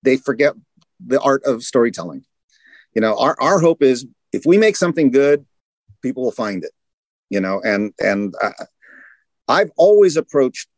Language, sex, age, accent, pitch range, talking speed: English, male, 40-59, American, 115-155 Hz, 160 wpm